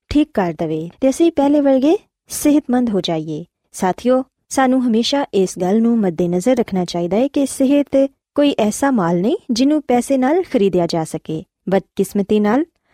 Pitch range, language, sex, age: 190-270 Hz, Urdu, female, 20-39